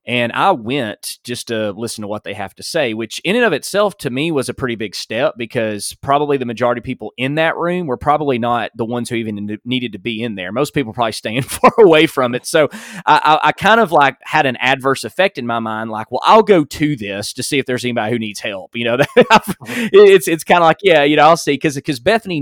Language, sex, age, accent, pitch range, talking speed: English, male, 20-39, American, 115-165 Hz, 250 wpm